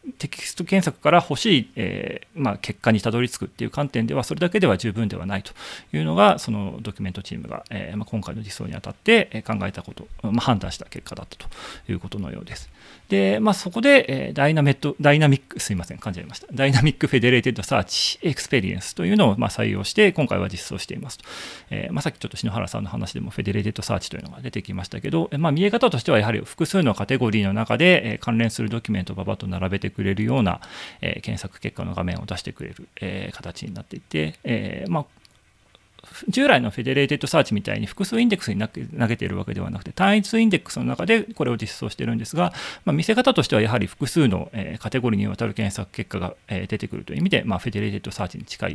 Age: 40-59